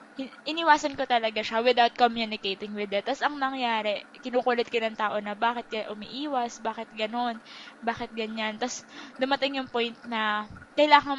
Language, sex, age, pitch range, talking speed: Filipino, female, 20-39, 220-265 Hz, 160 wpm